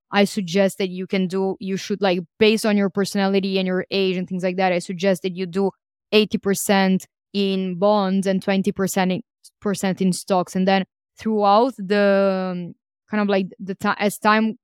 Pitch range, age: 185-205 Hz, 20-39